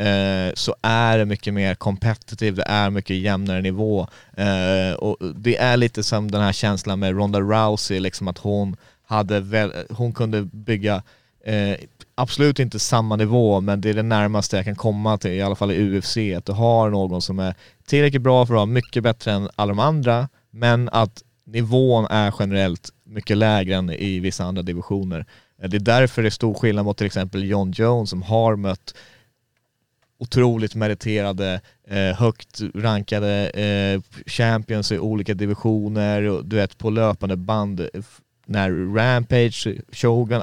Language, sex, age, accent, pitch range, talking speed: Swedish, male, 30-49, native, 100-115 Hz, 160 wpm